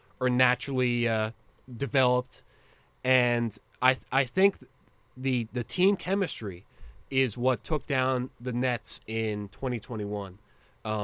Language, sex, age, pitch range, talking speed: English, male, 20-39, 110-135 Hz, 115 wpm